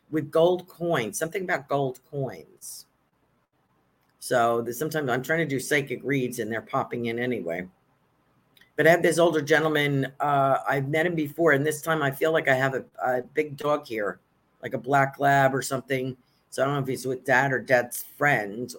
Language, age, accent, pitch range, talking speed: English, 50-69, American, 115-155 Hz, 195 wpm